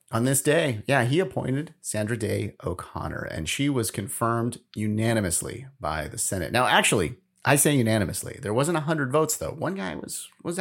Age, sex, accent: 30-49, male, American